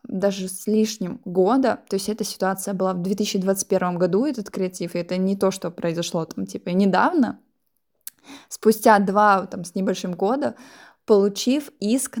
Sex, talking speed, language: female, 150 wpm, Russian